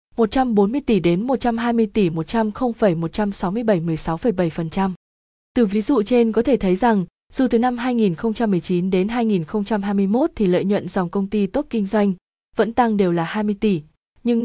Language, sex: Vietnamese, female